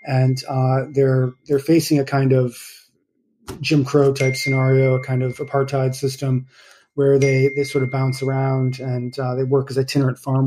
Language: English